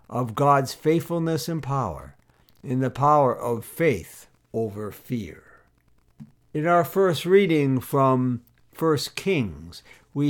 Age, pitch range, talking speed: 60-79, 130-170 Hz, 115 wpm